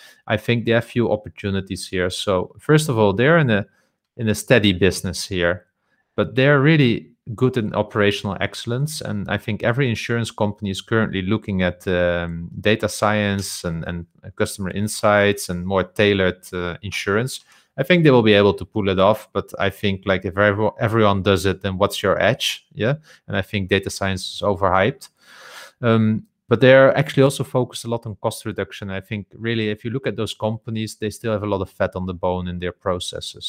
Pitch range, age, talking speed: 95-115 Hz, 30-49, 200 wpm